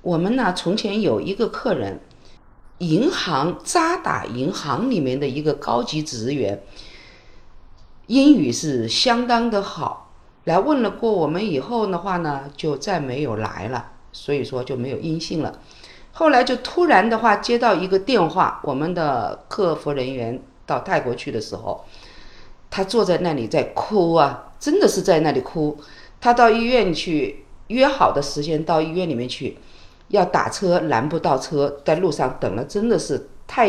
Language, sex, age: Chinese, female, 50-69